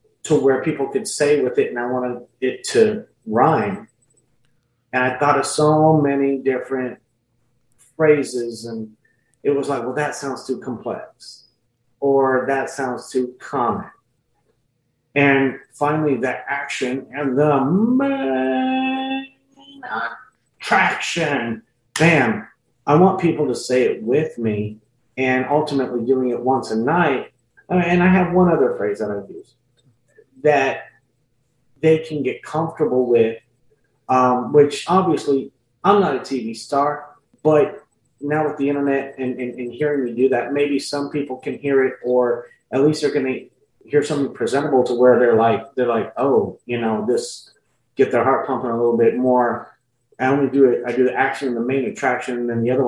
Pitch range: 125-145 Hz